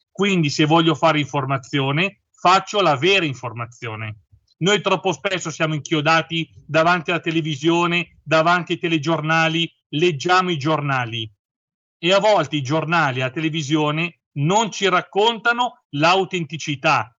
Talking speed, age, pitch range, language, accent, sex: 120 wpm, 40-59, 145-180 Hz, Italian, native, male